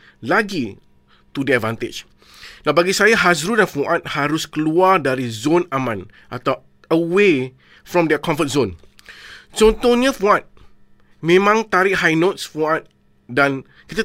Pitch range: 145-200 Hz